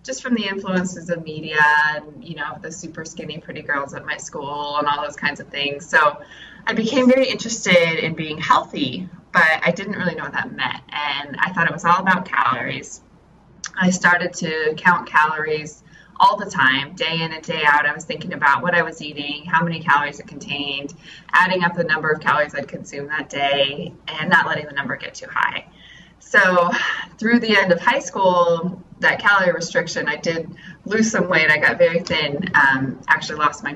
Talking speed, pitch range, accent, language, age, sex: 205 wpm, 150-185 Hz, American, English, 20-39, female